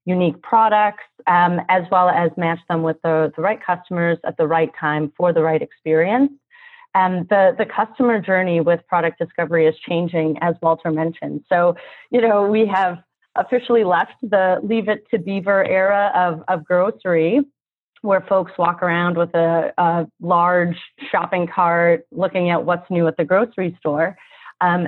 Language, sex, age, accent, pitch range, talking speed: English, female, 30-49, American, 165-200 Hz, 165 wpm